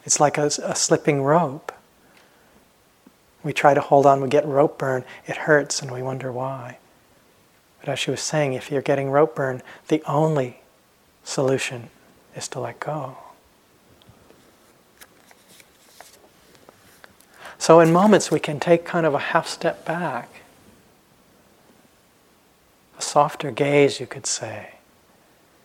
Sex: male